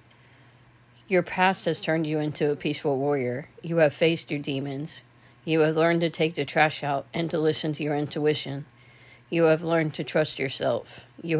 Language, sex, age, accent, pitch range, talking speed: English, female, 40-59, American, 135-155 Hz, 185 wpm